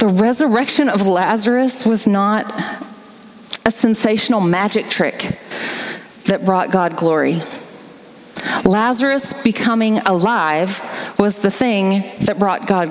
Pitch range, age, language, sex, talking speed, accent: 200-245 Hz, 30-49, English, female, 105 wpm, American